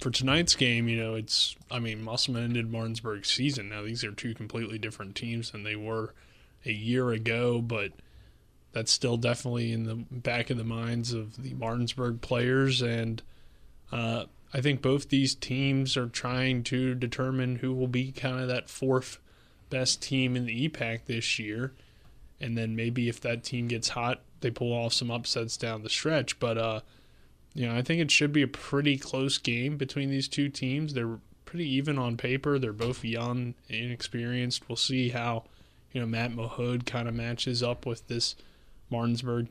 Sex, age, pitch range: male, 20-39, 115-125 Hz